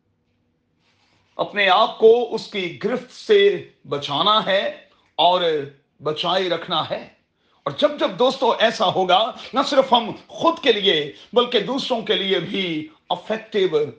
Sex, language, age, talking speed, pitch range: male, Urdu, 40-59, 135 wpm, 155-225 Hz